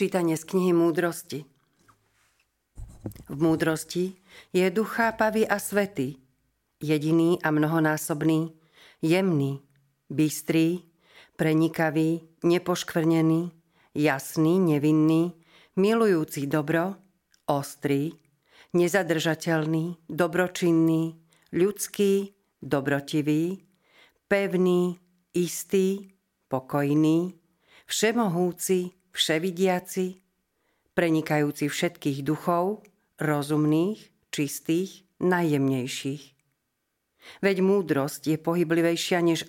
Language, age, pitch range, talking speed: Slovak, 50-69, 150-180 Hz, 65 wpm